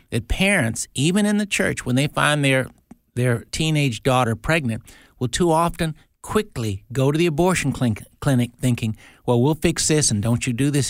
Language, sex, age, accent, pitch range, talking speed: English, male, 60-79, American, 115-150 Hz, 185 wpm